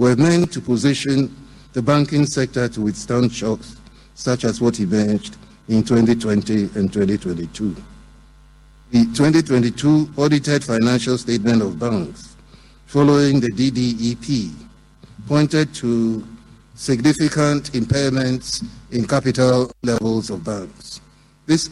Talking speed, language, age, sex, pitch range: 105 wpm, English, 60-79, male, 115-140 Hz